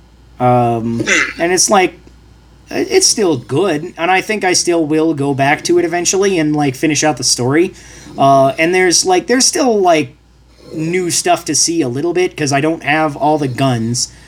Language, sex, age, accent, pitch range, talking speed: English, male, 30-49, American, 120-155 Hz, 190 wpm